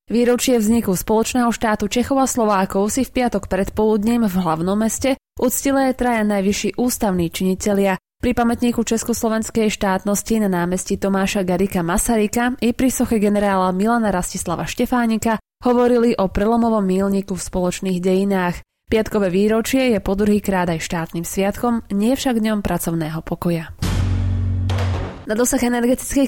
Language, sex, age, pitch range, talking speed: Slovak, female, 20-39, 190-235 Hz, 125 wpm